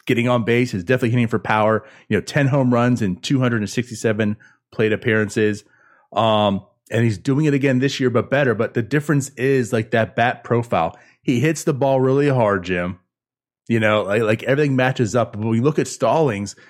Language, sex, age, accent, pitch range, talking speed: English, male, 30-49, American, 115-140 Hz, 200 wpm